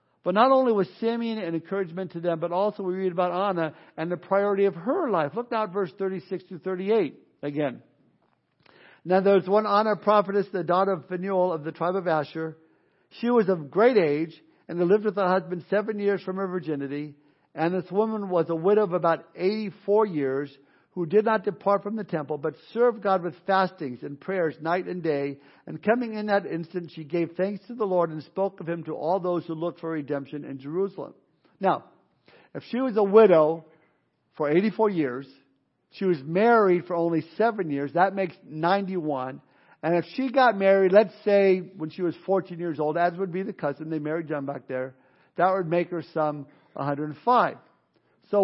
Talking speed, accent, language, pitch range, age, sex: 195 wpm, American, English, 160-200 Hz, 60-79, male